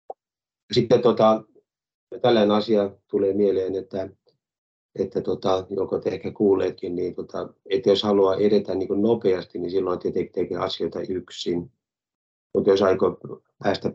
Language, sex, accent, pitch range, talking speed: Finnish, male, native, 85-100 Hz, 135 wpm